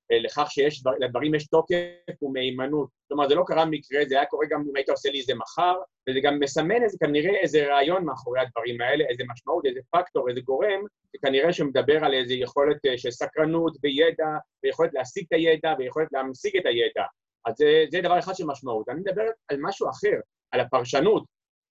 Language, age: Hebrew, 30-49